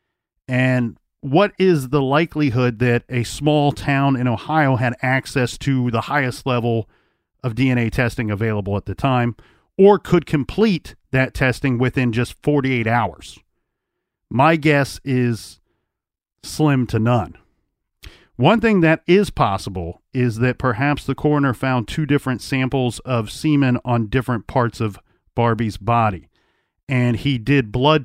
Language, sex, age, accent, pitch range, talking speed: English, male, 40-59, American, 115-145 Hz, 140 wpm